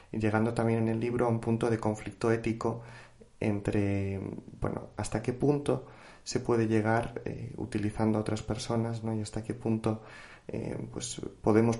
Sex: male